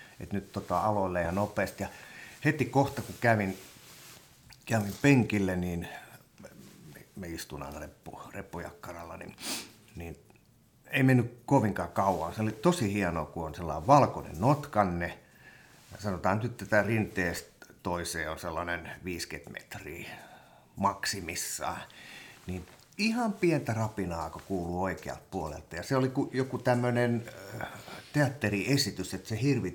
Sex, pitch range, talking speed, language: male, 90-125 Hz, 125 wpm, Finnish